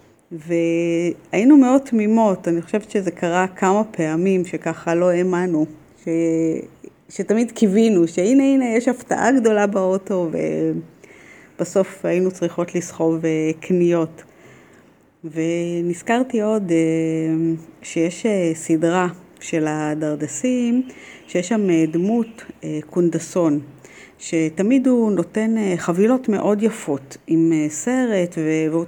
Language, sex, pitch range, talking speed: Hebrew, female, 160-200 Hz, 95 wpm